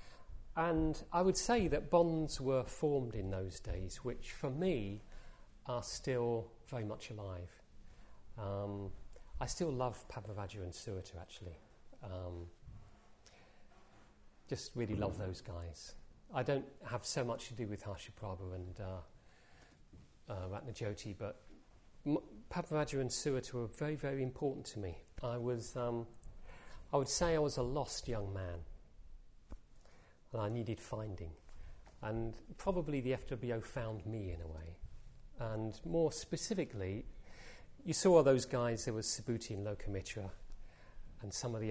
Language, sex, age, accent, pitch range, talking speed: English, male, 40-59, British, 95-130 Hz, 145 wpm